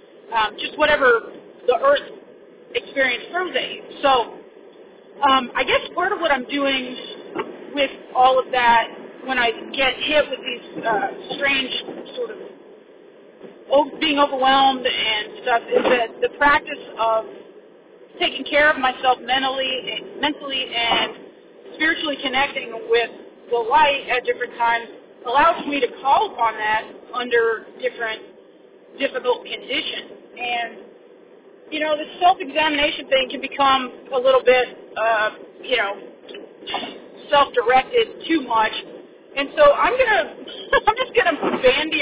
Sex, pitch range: female, 260-440 Hz